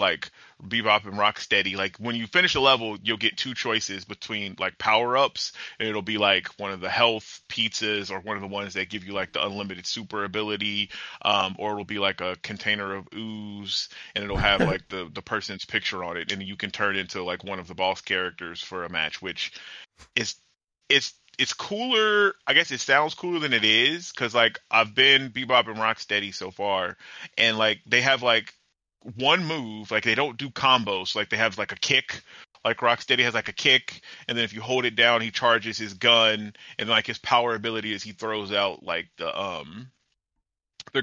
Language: English